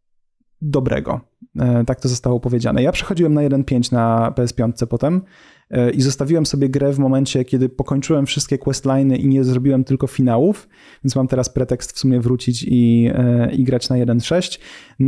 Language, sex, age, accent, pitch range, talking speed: Polish, male, 30-49, native, 125-145 Hz, 155 wpm